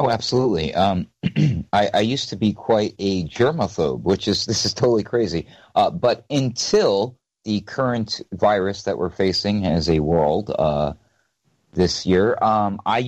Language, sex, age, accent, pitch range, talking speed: English, male, 40-59, American, 80-105 Hz, 155 wpm